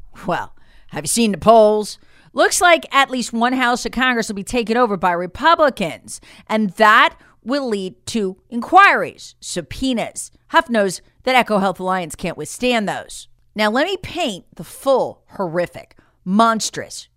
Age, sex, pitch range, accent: 40-59, female, 190-305 Hz, American